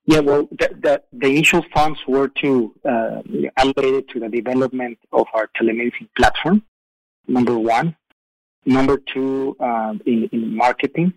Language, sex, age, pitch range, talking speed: English, male, 30-49, 115-145 Hz, 140 wpm